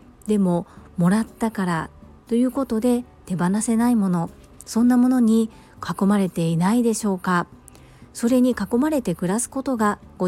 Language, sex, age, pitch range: Japanese, female, 40-59, 175-240 Hz